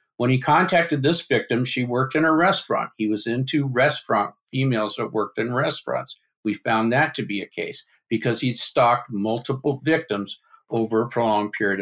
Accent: American